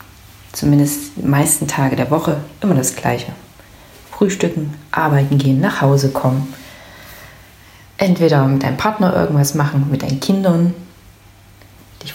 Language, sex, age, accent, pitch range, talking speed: German, female, 30-49, German, 140-185 Hz, 125 wpm